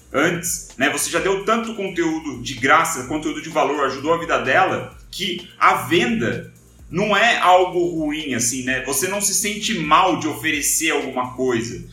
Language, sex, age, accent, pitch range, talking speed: Portuguese, male, 30-49, Brazilian, 130-205 Hz, 165 wpm